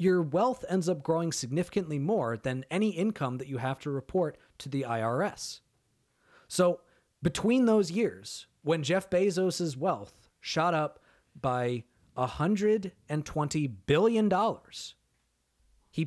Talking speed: 120 wpm